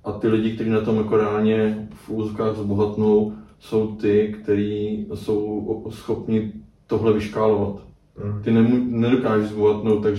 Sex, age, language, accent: male, 20-39, Czech, native